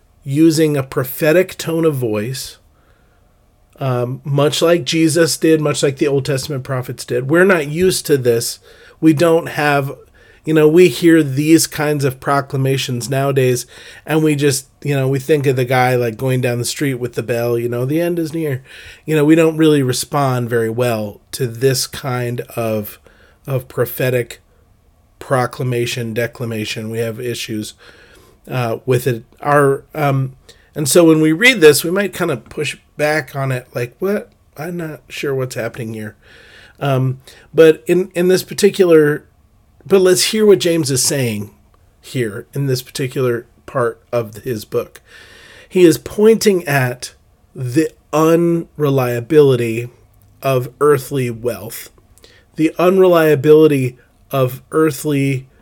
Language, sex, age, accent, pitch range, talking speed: English, male, 40-59, American, 120-155 Hz, 150 wpm